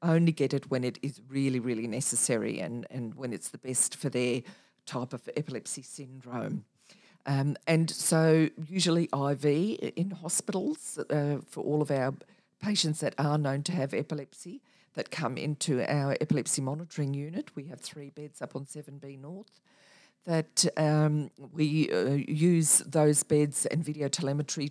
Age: 50-69